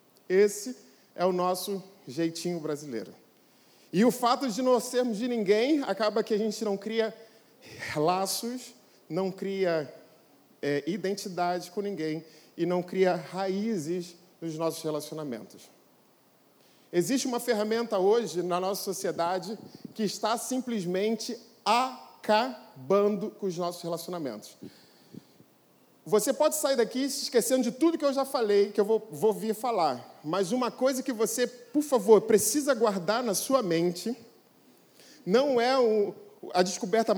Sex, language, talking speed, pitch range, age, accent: male, Portuguese, 135 wpm, 185-240 Hz, 40-59, Brazilian